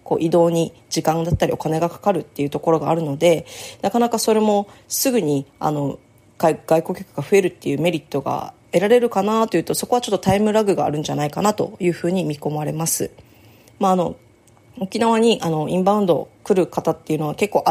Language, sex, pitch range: Japanese, female, 155-200 Hz